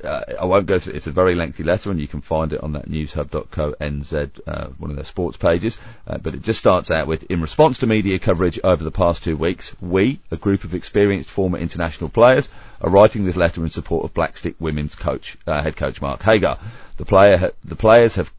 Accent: British